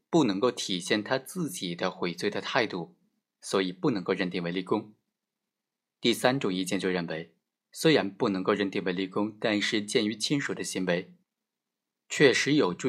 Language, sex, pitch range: Chinese, male, 95-135 Hz